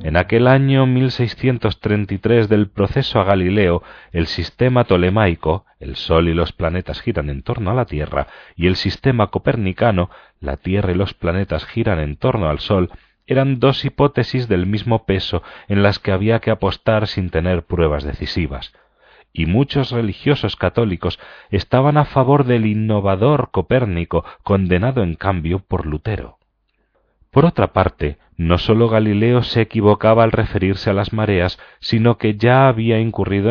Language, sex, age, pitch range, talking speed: Spanish, male, 40-59, 90-115 Hz, 150 wpm